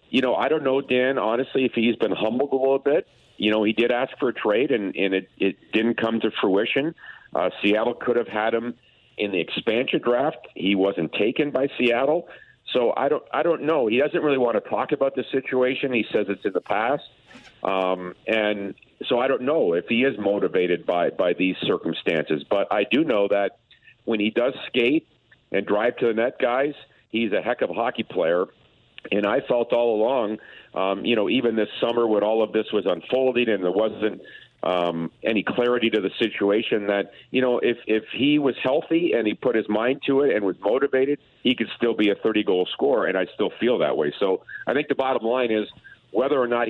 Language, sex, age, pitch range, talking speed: English, male, 50-69, 100-125 Hz, 215 wpm